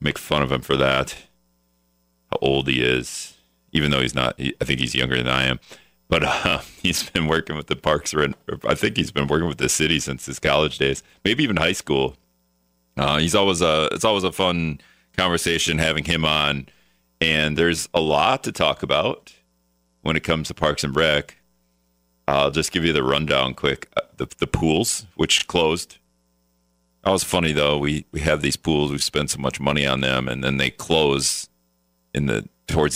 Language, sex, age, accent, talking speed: English, male, 40-59, American, 200 wpm